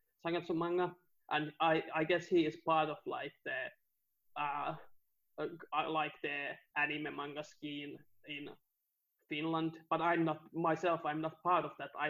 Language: English